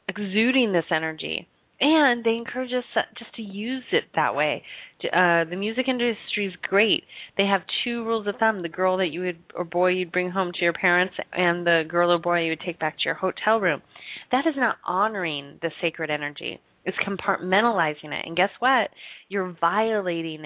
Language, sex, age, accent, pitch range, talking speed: English, female, 30-49, American, 170-220 Hz, 190 wpm